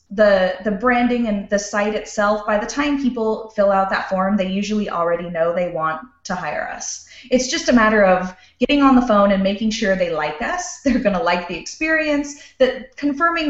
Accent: American